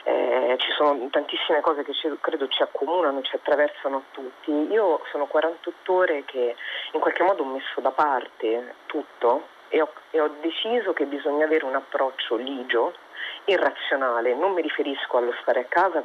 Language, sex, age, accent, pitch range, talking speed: Italian, female, 40-59, native, 135-165 Hz, 170 wpm